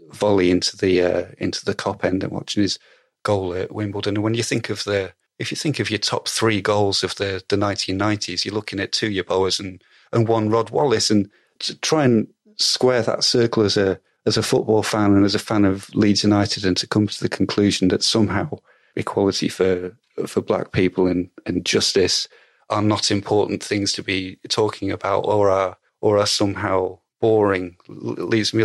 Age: 30-49